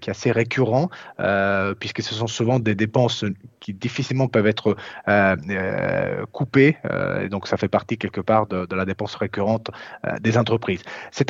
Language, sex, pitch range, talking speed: French, male, 105-135 Hz, 180 wpm